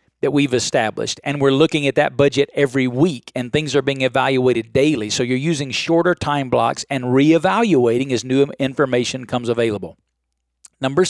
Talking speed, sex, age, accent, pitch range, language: 160 wpm, male, 40-59, American, 120-140 Hz, English